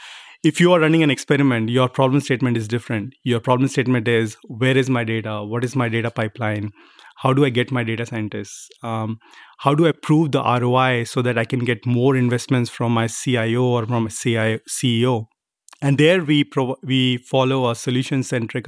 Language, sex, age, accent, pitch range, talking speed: English, male, 30-49, Indian, 120-140 Hz, 195 wpm